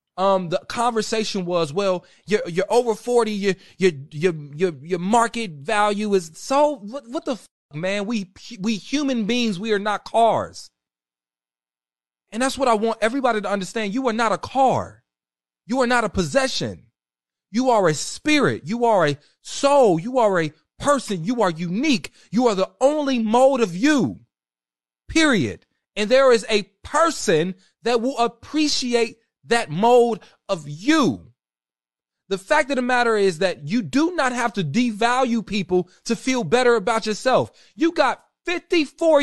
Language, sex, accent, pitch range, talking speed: English, male, American, 195-290 Hz, 160 wpm